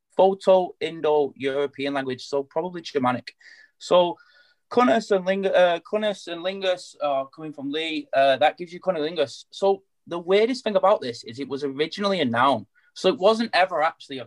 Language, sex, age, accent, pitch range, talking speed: English, male, 20-39, British, 140-195 Hz, 175 wpm